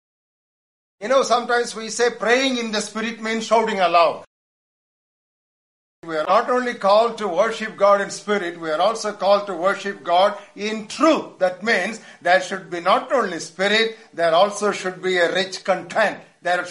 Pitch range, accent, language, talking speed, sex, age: 185-220 Hz, Indian, English, 170 wpm, male, 60-79